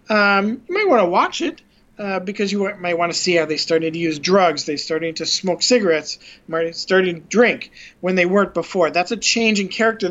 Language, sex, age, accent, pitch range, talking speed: English, male, 40-59, American, 175-220 Hz, 220 wpm